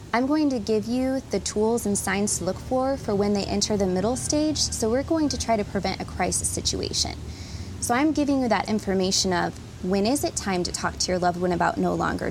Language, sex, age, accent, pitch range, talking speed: English, female, 20-39, American, 185-245 Hz, 240 wpm